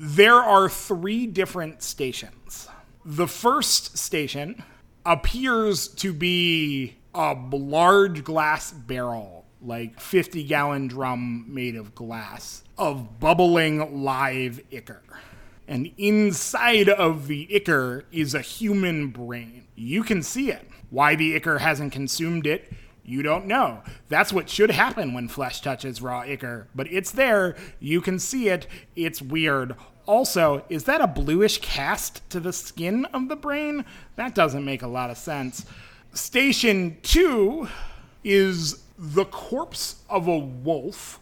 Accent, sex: American, male